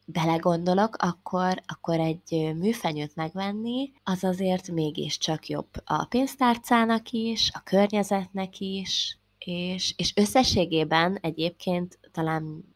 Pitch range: 160-205 Hz